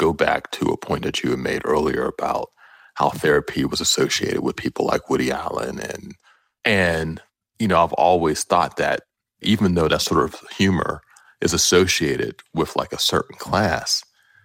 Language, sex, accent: English, male, American